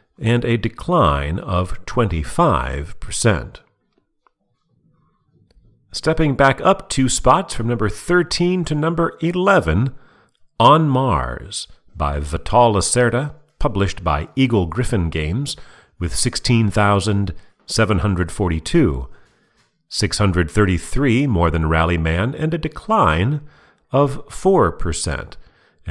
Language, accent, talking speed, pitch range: English, American, 90 wpm, 85-135 Hz